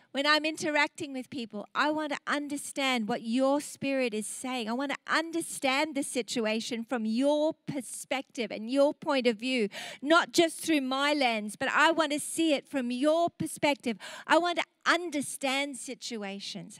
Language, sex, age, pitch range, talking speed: English, female, 50-69, 240-310 Hz, 170 wpm